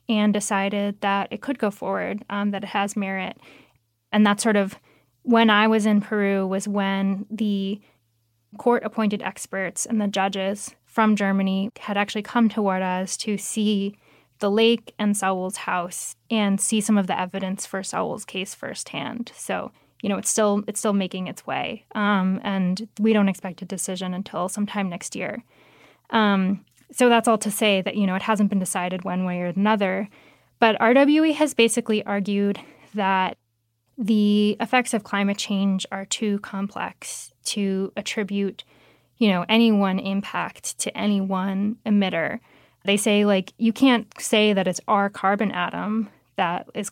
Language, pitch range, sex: English, 195-215 Hz, female